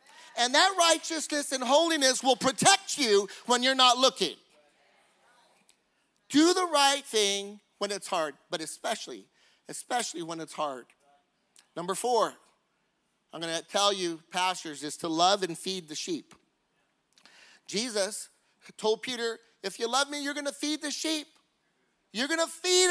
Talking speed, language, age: 150 wpm, English, 40-59